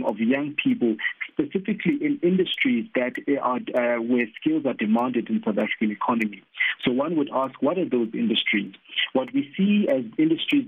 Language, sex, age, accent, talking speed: English, male, 50-69, South African, 170 wpm